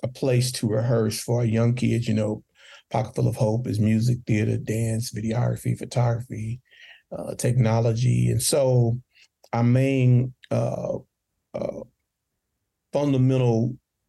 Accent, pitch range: American, 115-130 Hz